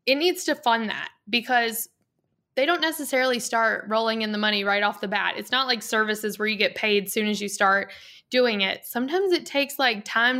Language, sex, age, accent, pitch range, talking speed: English, female, 10-29, American, 210-255 Hz, 220 wpm